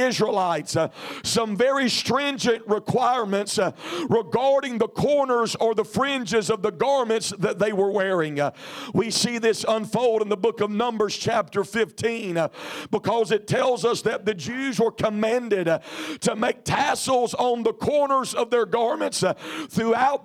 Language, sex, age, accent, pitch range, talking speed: English, male, 50-69, American, 210-250 Hz, 160 wpm